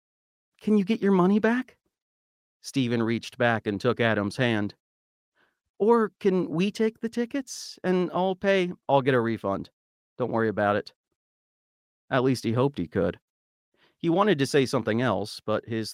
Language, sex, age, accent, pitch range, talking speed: English, male, 40-59, American, 105-145 Hz, 165 wpm